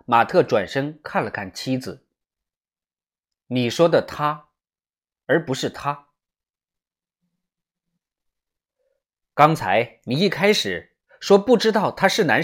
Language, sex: Chinese, male